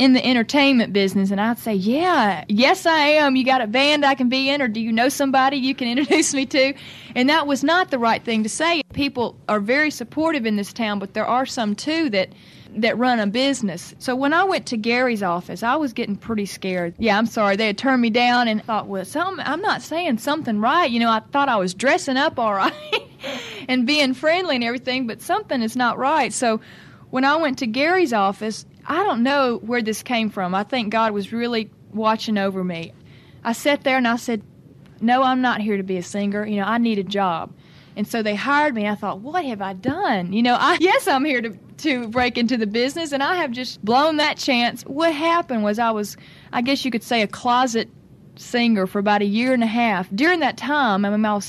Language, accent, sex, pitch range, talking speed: English, American, female, 210-275 Hz, 235 wpm